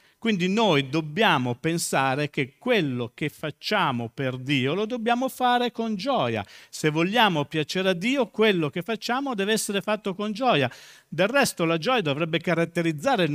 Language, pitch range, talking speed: Italian, 160-215 Hz, 155 wpm